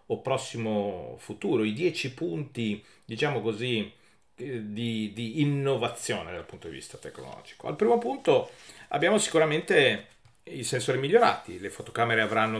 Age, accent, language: 40-59, native, Italian